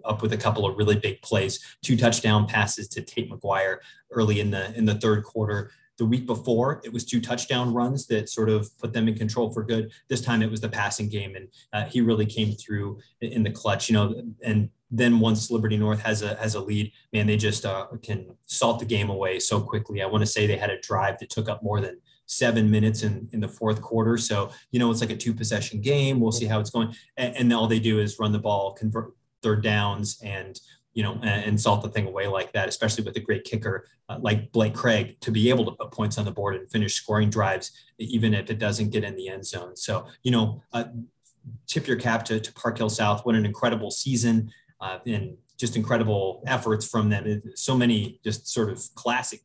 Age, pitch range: 20-39, 105-115 Hz